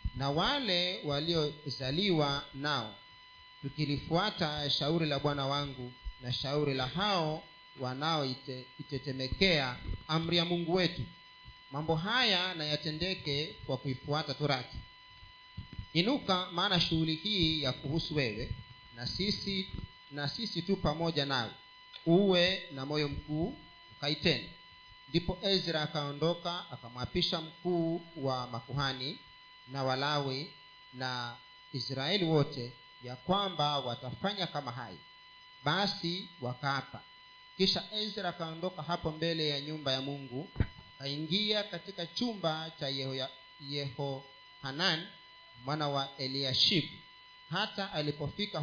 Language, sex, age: Swahili, male, 40-59